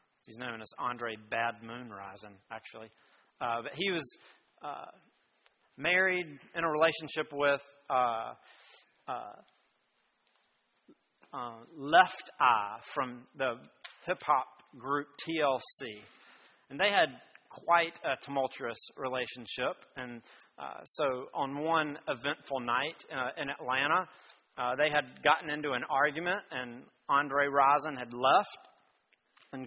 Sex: male